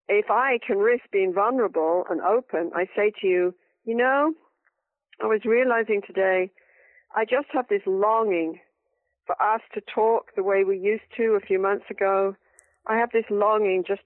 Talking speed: 175 wpm